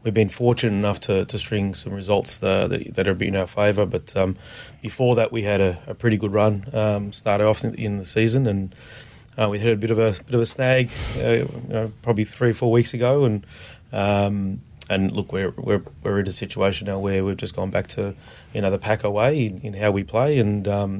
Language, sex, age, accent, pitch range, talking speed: English, male, 30-49, Australian, 105-115 Hz, 245 wpm